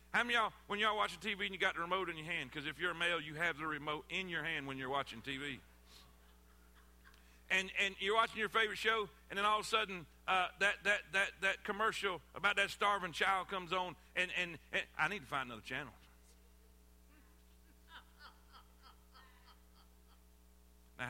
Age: 50-69